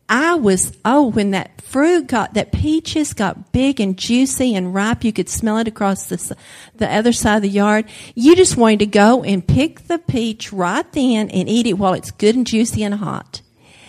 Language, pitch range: English, 190-240 Hz